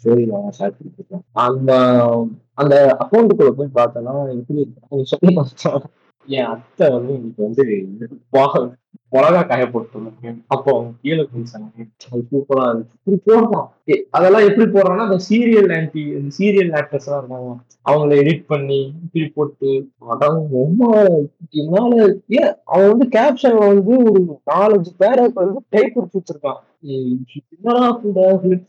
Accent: native